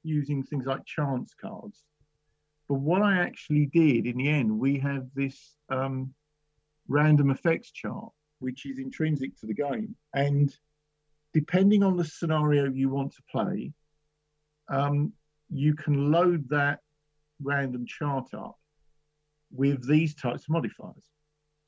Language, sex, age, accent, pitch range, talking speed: English, male, 50-69, British, 120-150 Hz, 135 wpm